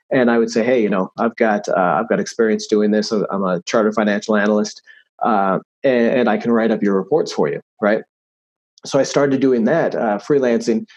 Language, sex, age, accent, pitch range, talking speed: English, male, 30-49, American, 110-130 Hz, 215 wpm